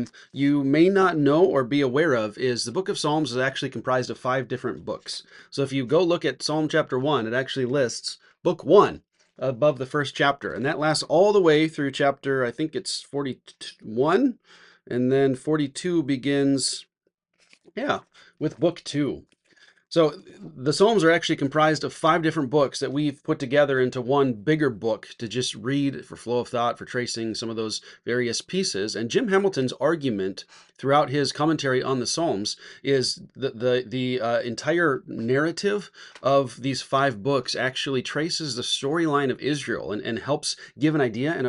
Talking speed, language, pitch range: 180 wpm, English, 125-150 Hz